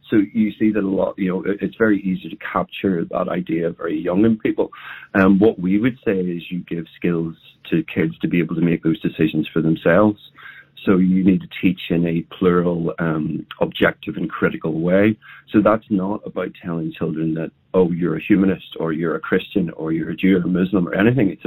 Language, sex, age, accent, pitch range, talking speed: English, male, 40-59, British, 85-100 Hz, 220 wpm